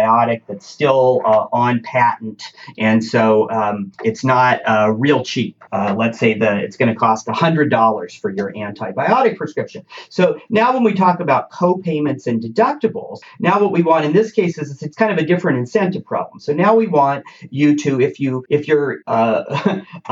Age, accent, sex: 40-59, American, male